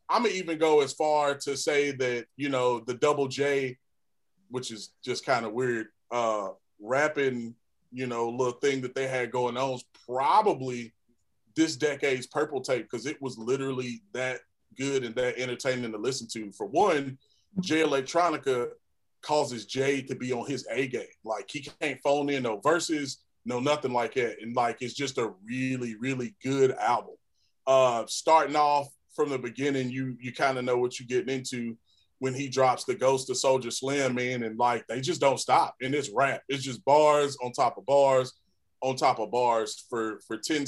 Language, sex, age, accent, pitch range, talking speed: English, male, 30-49, American, 125-150 Hz, 190 wpm